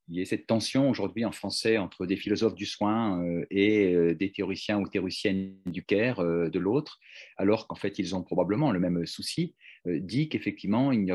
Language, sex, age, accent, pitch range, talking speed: French, male, 40-59, French, 95-115 Hz, 180 wpm